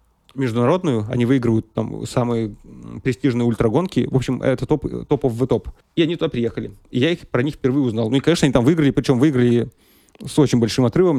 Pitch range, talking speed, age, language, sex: 115-145 Hz, 200 wpm, 30-49, Russian, male